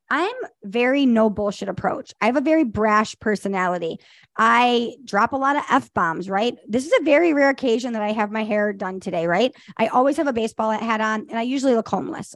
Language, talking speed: English, 215 wpm